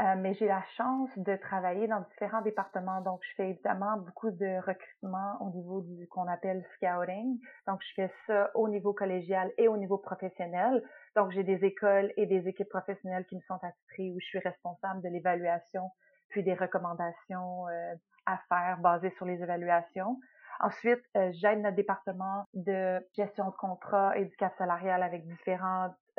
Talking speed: 180 wpm